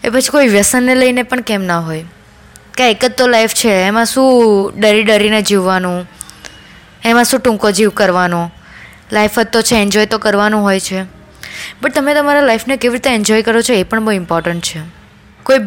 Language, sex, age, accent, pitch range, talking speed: Gujarati, female, 20-39, native, 190-230 Hz, 145 wpm